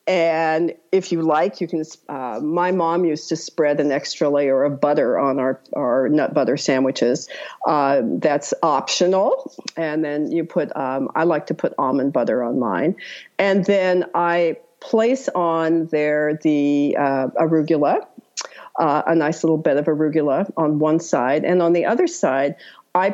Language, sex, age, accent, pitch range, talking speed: English, female, 50-69, American, 150-185 Hz, 160 wpm